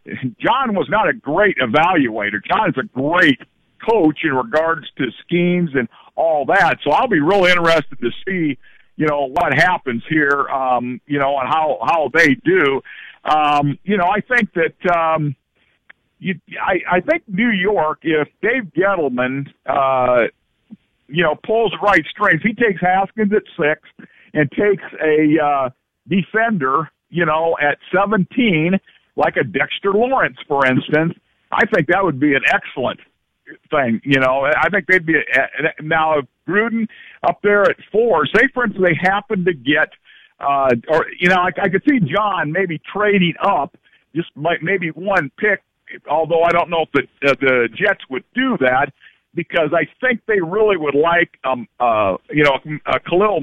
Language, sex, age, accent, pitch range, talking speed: English, male, 50-69, American, 150-200 Hz, 170 wpm